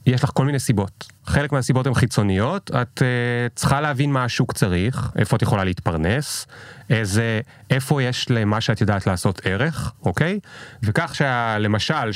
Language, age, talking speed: Hebrew, 30-49, 155 wpm